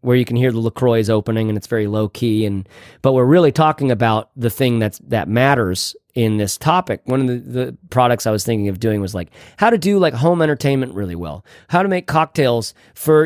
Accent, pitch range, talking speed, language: American, 115-165 Hz, 230 wpm, English